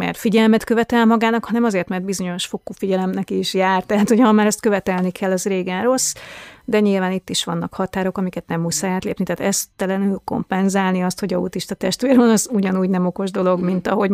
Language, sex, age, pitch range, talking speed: Hungarian, female, 30-49, 185-210 Hz, 205 wpm